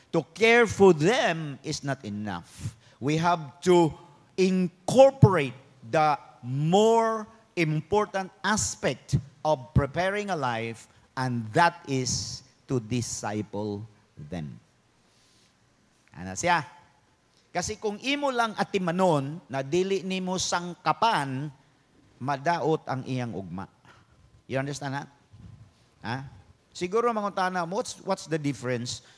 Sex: male